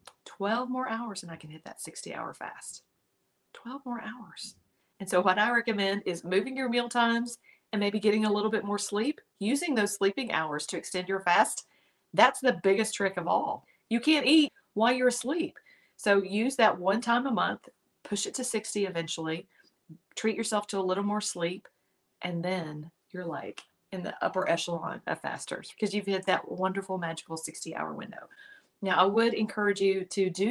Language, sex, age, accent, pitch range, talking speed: English, female, 40-59, American, 170-220 Hz, 190 wpm